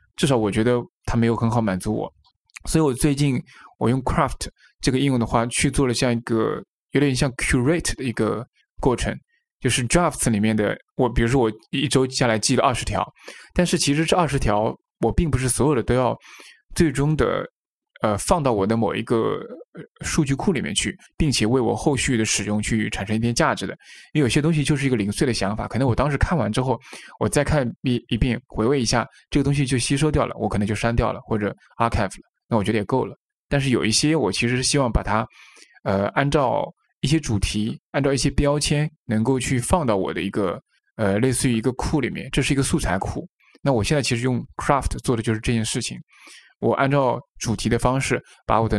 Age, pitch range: 20-39, 115-140 Hz